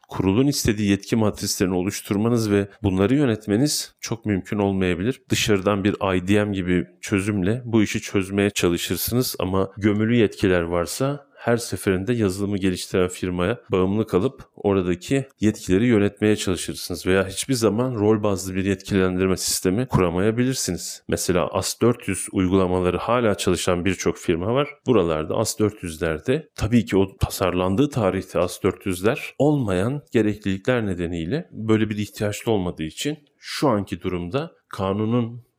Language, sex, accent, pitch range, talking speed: Turkish, male, native, 95-115 Hz, 120 wpm